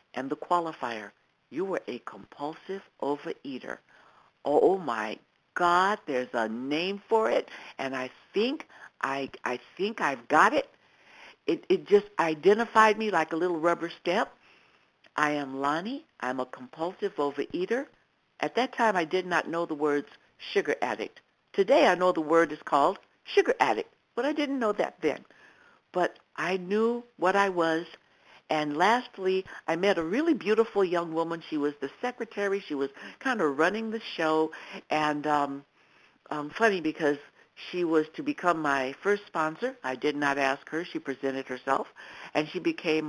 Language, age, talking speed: English, 60-79, 165 wpm